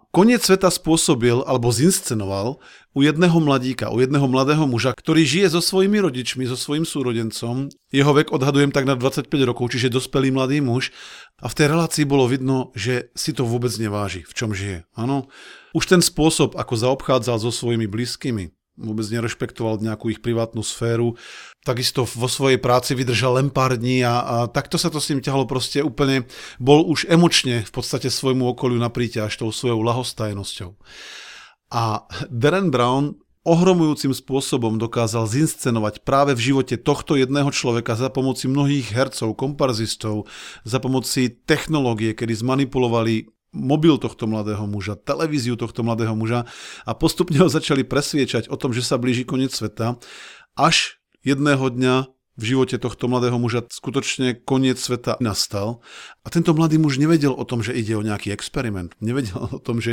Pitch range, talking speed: 115-140 Hz, 160 wpm